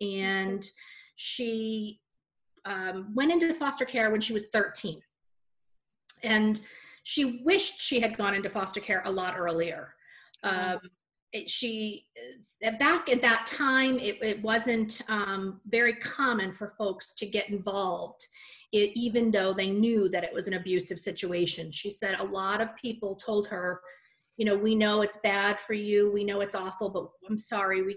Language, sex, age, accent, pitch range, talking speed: English, female, 40-59, American, 190-230 Hz, 160 wpm